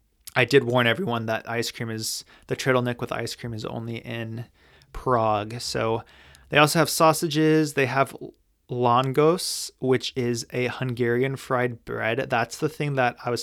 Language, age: English, 20-39